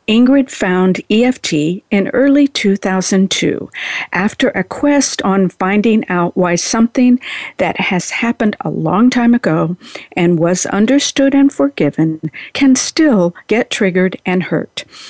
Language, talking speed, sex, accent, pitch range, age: English, 125 wpm, female, American, 185-265 Hz, 50-69